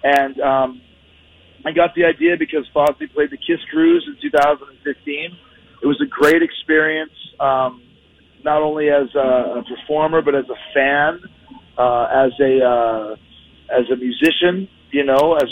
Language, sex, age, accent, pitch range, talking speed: English, male, 40-59, American, 125-155 Hz, 150 wpm